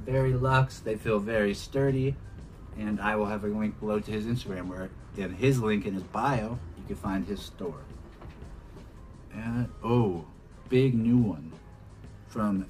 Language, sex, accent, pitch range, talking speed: English, male, American, 95-115 Hz, 160 wpm